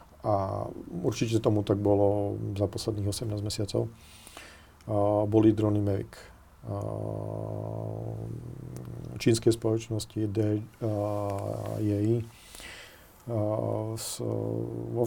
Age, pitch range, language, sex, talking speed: 40-59, 105-115 Hz, Slovak, male, 80 wpm